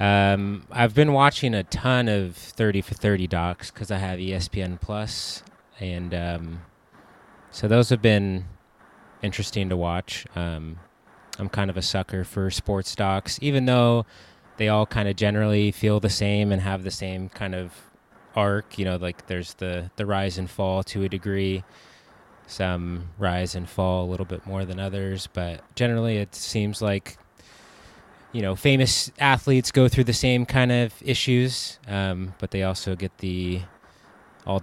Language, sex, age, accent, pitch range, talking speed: English, male, 20-39, American, 95-110 Hz, 165 wpm